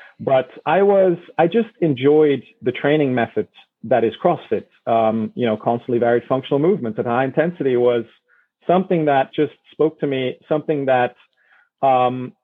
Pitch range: 115-150 Hz